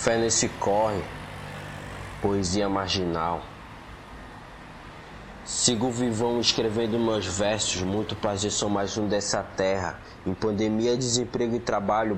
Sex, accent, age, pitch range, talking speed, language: male, Brazilian, 20-39, 100-120 Hz, 110 wpm, English